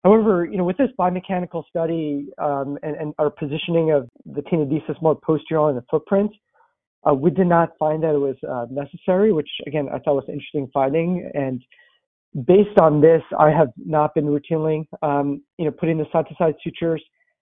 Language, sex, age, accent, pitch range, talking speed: English, male, 40-59, American, 145-170 Hz, 185 wpm